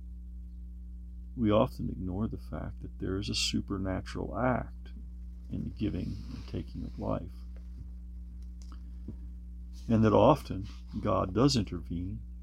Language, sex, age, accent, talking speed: English, male, 50-69, American, 115 wpm